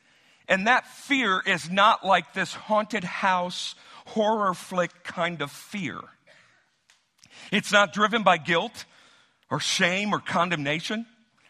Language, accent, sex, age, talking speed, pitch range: English, American, male, 50-69, 120 wpm, 140-200 Hz